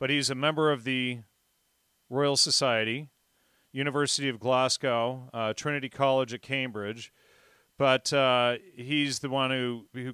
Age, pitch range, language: 40-59, 115-135 Hz, English